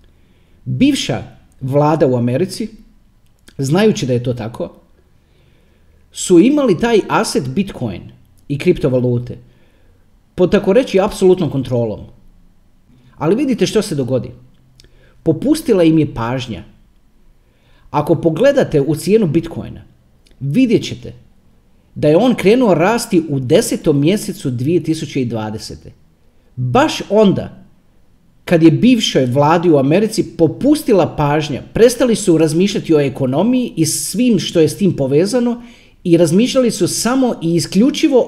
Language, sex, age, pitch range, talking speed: Croatian, male, 40-59, 125-210 Hz, 115 wpm